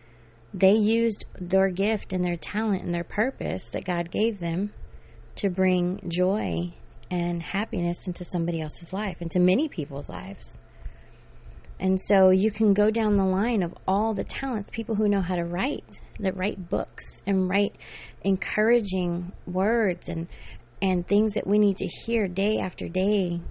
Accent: American